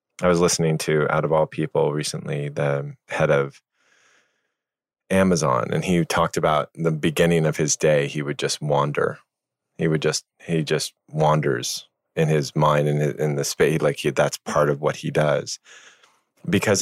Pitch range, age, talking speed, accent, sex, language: 70-80 Hz, 30-49, 175 wpm, American, male, English